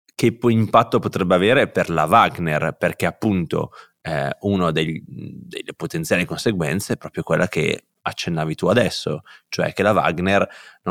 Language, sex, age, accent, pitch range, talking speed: Italian, male, 30-49, native, 85-100 Hz, 140 wpm